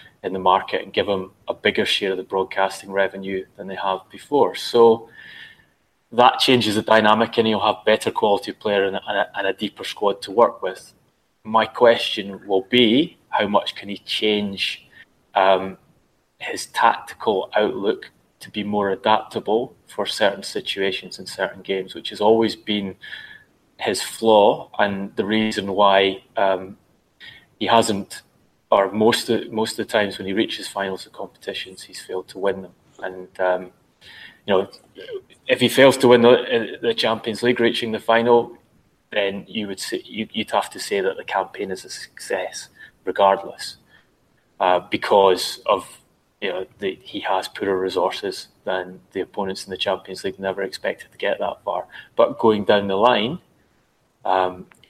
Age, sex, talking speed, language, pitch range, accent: 20-39, male, 165 wpm, English, 95-115 Hz, British